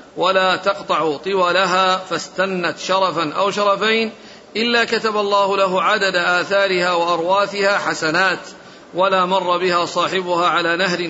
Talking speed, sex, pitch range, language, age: 115 wpm, male, 180-200 Hz, Arabic, 50-69